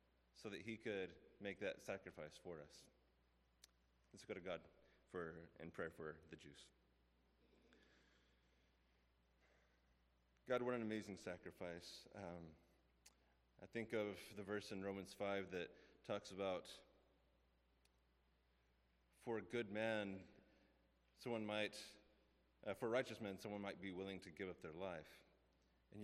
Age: 30-49